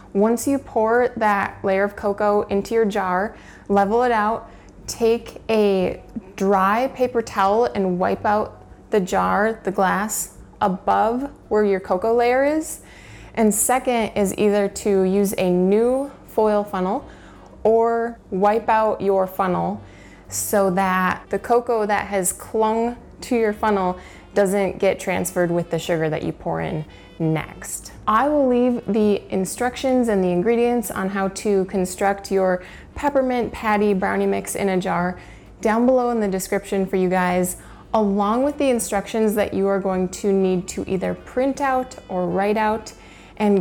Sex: female